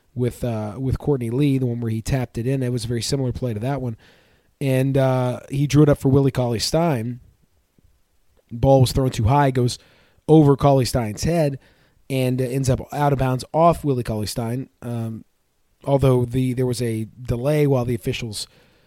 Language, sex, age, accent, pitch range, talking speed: English, male, 30-49, American, 120-145 Hz, 185 wpm